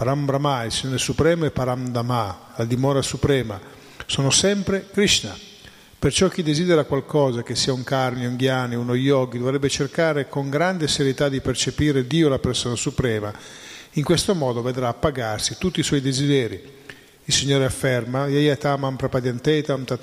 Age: 50-69